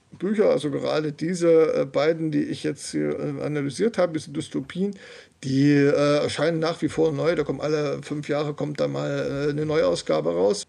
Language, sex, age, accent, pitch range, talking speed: German, male, 50-69, German, 145-170 Hz, 180 wpm